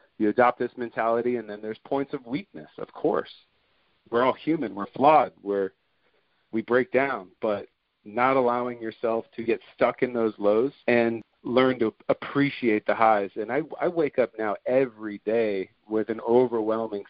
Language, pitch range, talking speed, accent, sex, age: English, 110-130 Hz, 170 wpm, American, male, 40-59